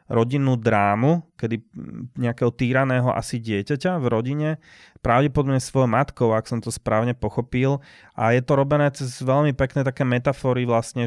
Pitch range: 105-125 Hz